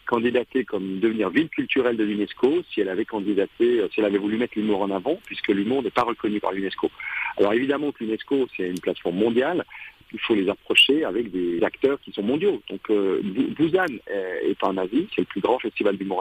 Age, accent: 50-69, French